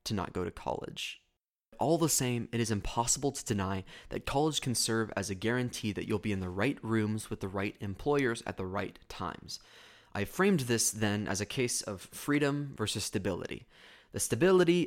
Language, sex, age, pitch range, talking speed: English, male, 20-39, 105-140 Hz, 195 wpm